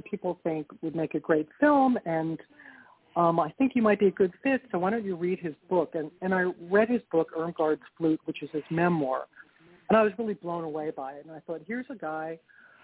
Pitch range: 165-205 Hz